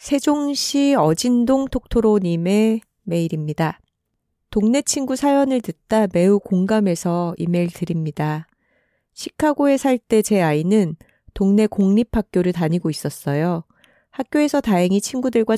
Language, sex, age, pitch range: Korean, female, 30-49, 170-230 Hz